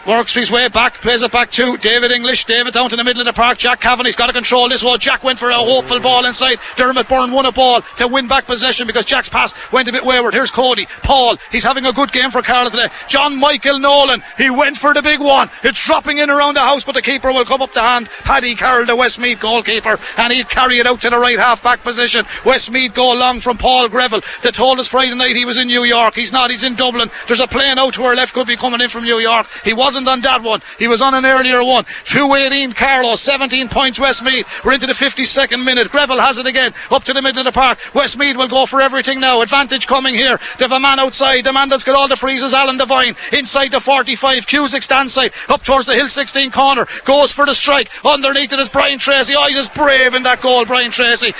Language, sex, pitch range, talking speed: English, male, 245-270 Hz, 255 wpm